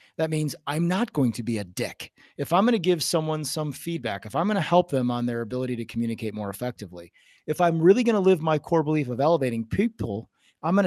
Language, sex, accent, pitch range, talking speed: English, male, American, 130-180 Hz, 245 wpm